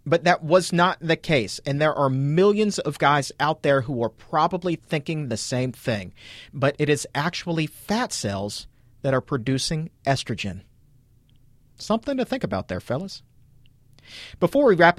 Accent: American